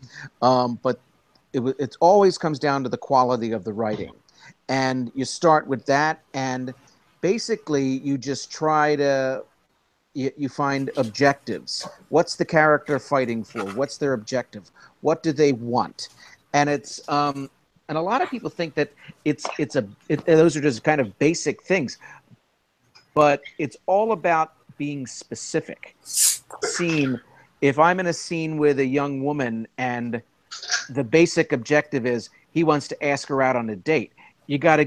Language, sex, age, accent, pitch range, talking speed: English, male, 50-69, American, 130-155 Hz, 160 wpm